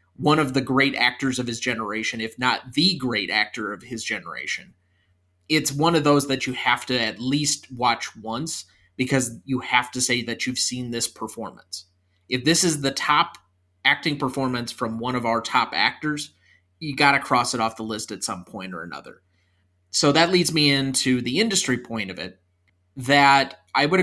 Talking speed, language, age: 190 wpm, English, 30-49